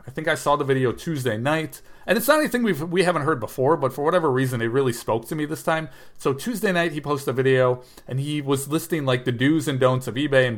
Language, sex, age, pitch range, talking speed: English, male, 40-59, 120-150 Hz, 265 wpm